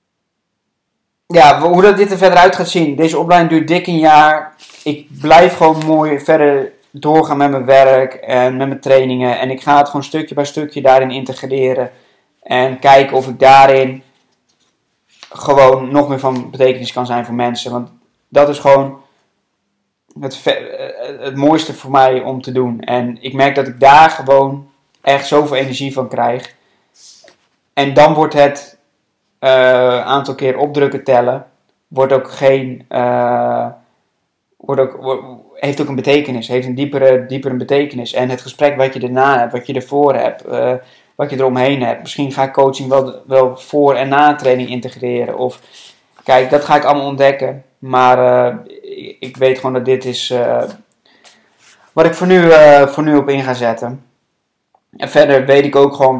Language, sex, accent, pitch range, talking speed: Dutch, male, Dutch, 130-145 Hz, 175 wpm